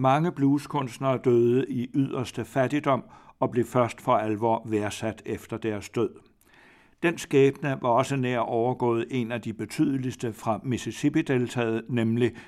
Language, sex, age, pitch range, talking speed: Danish, male, 60-79, 110-130 Hz, 135 wpm